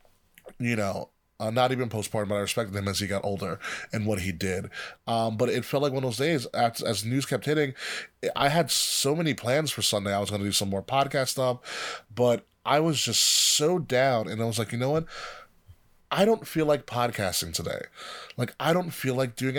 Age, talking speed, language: 20-39, 225 wpm, English